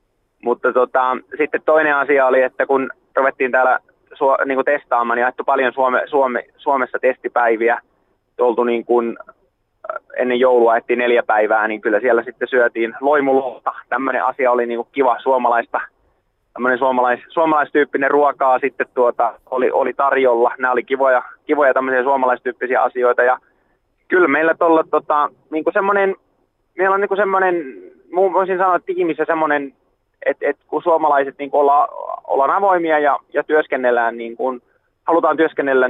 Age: 20-39